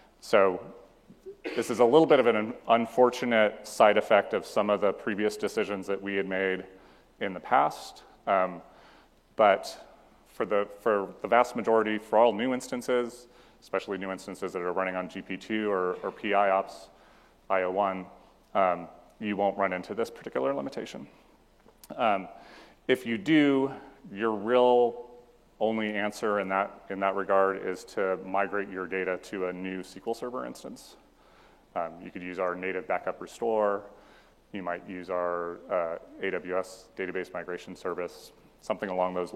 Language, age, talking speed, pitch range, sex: English, 30-49, 150 wpm, 95-115 Hz, male